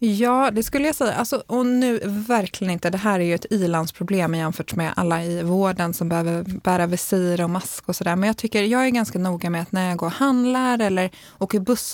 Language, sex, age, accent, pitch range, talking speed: Swedish, female, 20-39, native, 185-245 Hz, 235 wpm